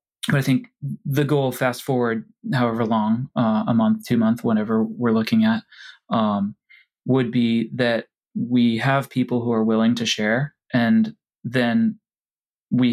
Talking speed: 155 wpm